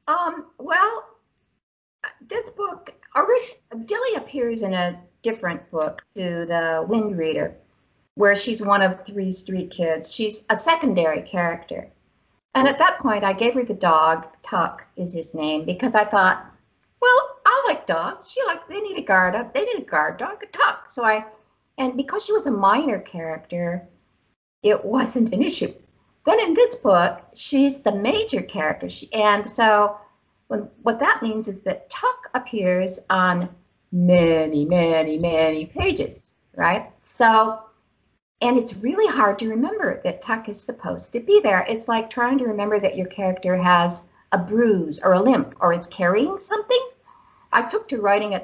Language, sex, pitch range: English, female, 180-260 Hz